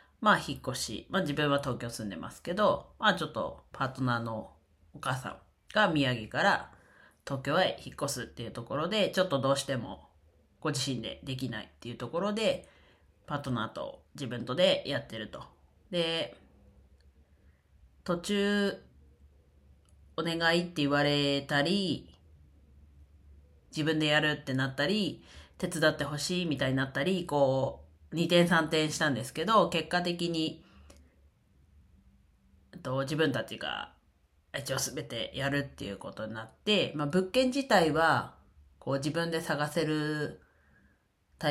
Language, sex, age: Japanese, female, 40-59